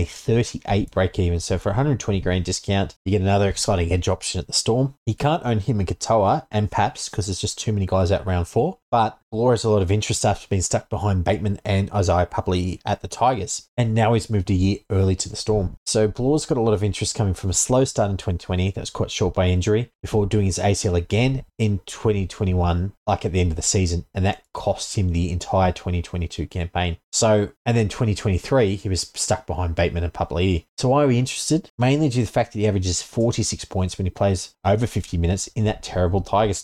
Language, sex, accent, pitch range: English, male, Australian, 90-110 Hz